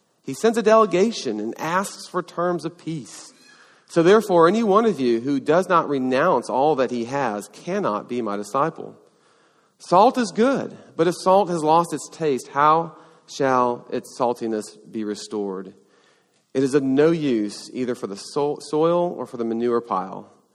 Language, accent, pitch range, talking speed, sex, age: English, American, 105-150 Hz, 170 wpm, male, 40-59